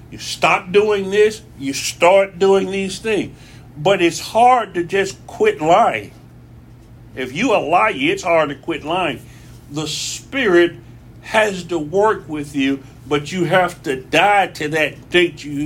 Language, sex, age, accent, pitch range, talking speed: English, male, 60-79, American, 135-175 Hz, 155 wpm